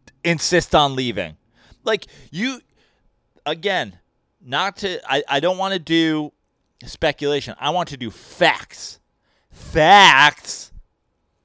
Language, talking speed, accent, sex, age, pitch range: English, 110 wpm, American, male, 30-49, 135-180 Hz